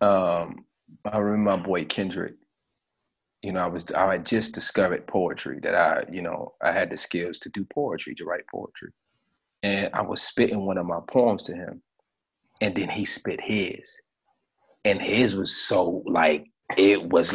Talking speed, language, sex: 175 wpm, English, male